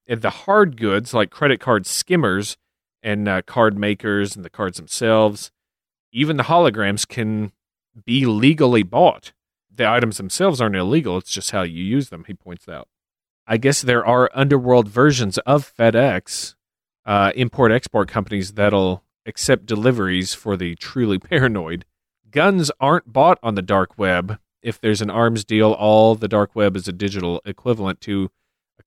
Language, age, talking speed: English, 40-59, 160 wpm